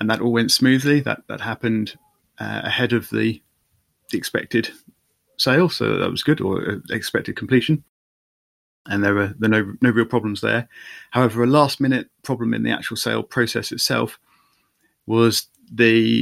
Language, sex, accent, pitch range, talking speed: English, male, British, 105-125 Hz, 170 wpm